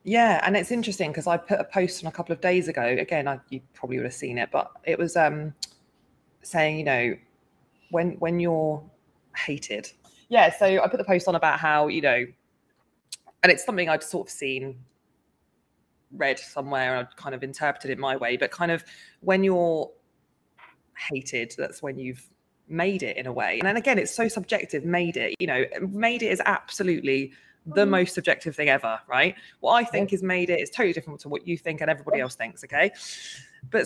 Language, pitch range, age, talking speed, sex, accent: English, 150-205 Hz, 20-39, 200 wpm, female, British